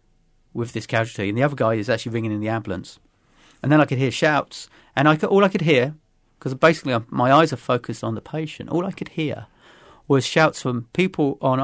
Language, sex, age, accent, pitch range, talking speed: English, male, 40-59, British, 120-155 Hz, 215 wpm